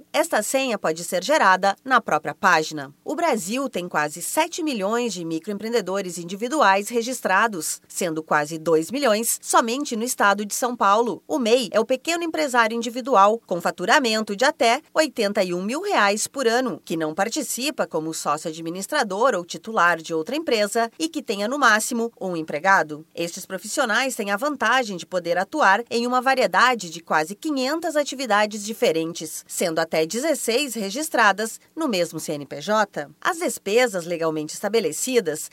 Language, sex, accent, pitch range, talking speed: Portuguese, female, Brazilian, 180-255 Hz, 150 wpm